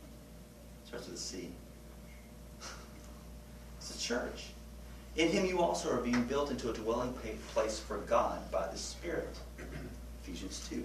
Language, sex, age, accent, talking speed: English, male, 40-59, American, 135 wpm